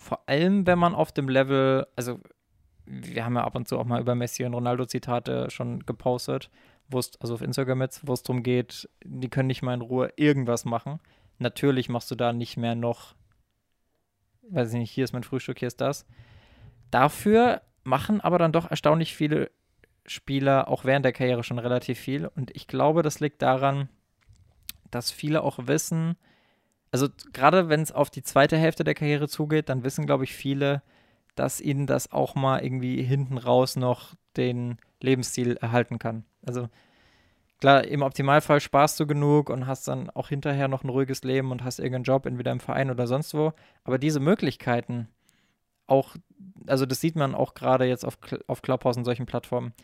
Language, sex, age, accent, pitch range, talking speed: German, male, 20-39, German, 120-145 Hz, 185 wpm